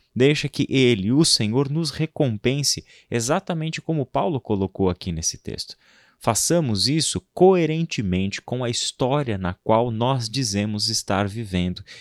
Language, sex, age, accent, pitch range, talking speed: Portuguese, male, 20-39, Brazilian, 95-125 Hz, 130 wpm